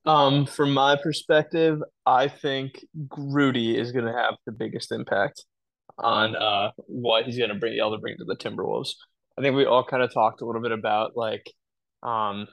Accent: American